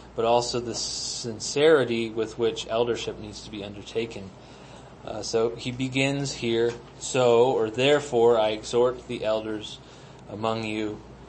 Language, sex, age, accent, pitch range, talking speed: English, male, 30-49, American, 115-130 Hz, 135 wpm